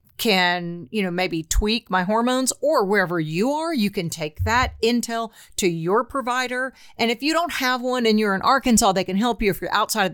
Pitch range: 185-250 Hz